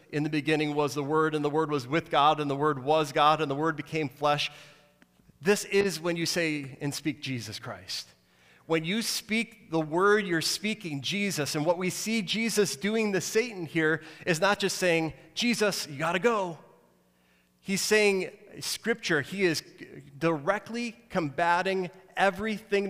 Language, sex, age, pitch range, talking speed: English, male, 30-49, 150-195 Hz, 170 wpm